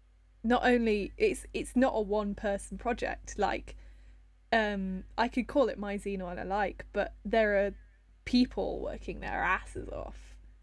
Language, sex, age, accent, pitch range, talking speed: English, female, 10-29, British, 190-235 Hz, 160 wpm